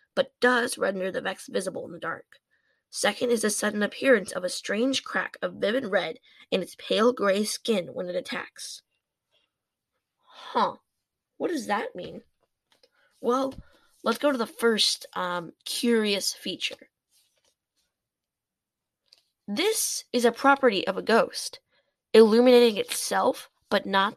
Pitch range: 205-280 Hz